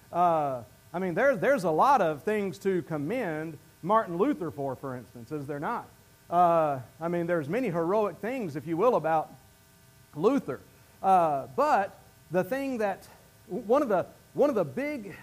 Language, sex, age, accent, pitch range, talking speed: English, male, 40-59, American, 130-215 Hz, 170 wpm